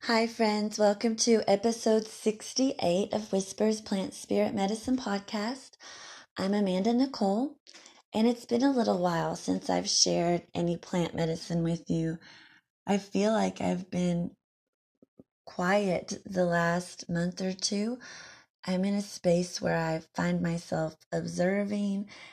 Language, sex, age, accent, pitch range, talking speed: English, female, 20-39, American, 170-205 Hz, 130 wpm